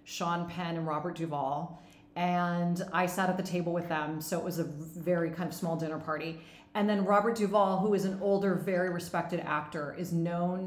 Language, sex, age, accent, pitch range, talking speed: English, female, 30-49, American, 165-195 Hz, 200 wpm